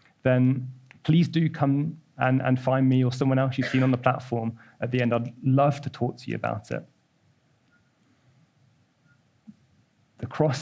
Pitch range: 120-140 Hz